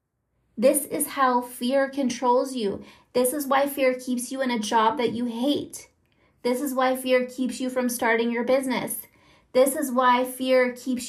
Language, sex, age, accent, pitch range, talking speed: English, female, 20-39, American, 225-260 Hz, 180 wpm